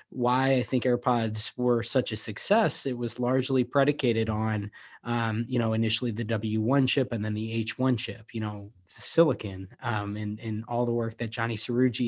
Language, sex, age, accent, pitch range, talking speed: English, male, 20-39, American, 115-130 Hz, 185 wpm